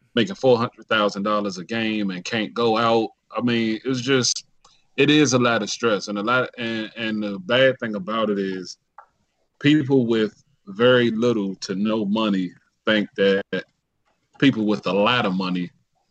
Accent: American